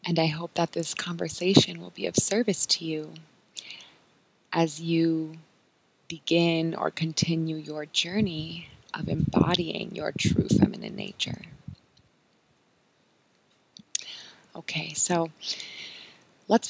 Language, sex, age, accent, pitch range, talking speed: English, female, 20-39, American, 155-180 Hz, 100 wpm